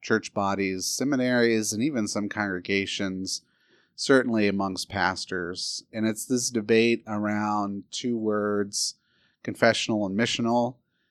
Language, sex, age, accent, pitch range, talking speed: English, male, 30-49, American, 105-125 Hz, 110 wpm